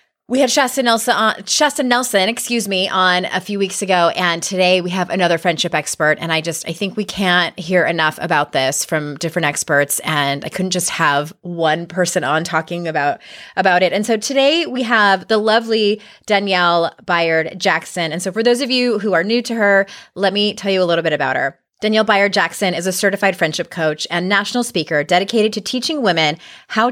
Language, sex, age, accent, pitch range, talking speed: English, female, 20-39, American, 165-215 Hz, 205 wpm